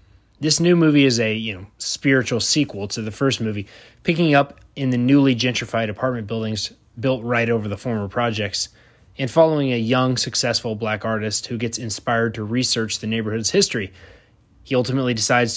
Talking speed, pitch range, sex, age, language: 175 wpm, 110-140 Hz, male, 20-39, English